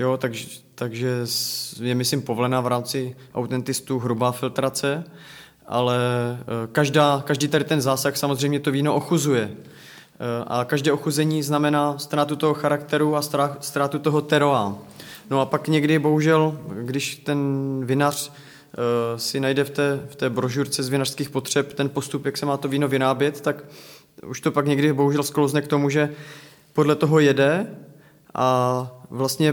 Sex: male